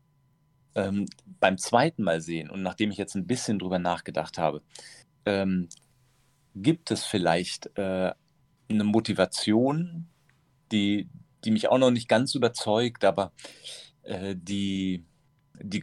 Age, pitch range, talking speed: 40-59, 90-130 Hz, 125 wpm